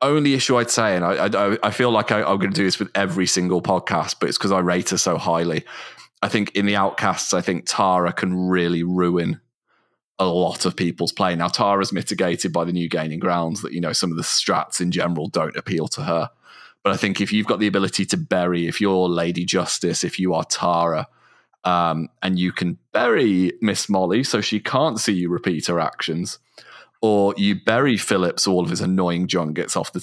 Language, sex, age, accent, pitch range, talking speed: English, male, 30-49, British, 90-100 Hz, 215 wpm